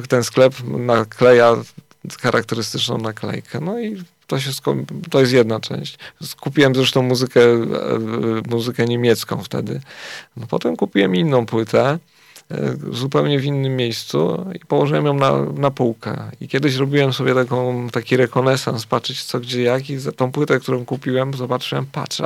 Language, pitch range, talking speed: Polish, 120-135 Hz, 145 wpm